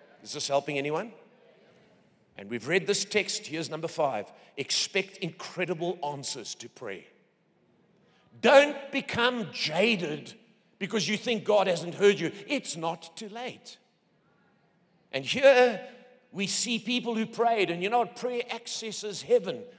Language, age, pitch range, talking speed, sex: English, 50-69, 175-235 Hz, 135 wpm, male